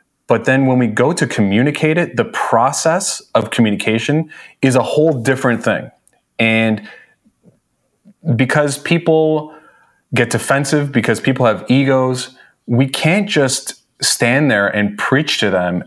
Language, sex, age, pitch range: English, male, 30-49, 105-135 Hz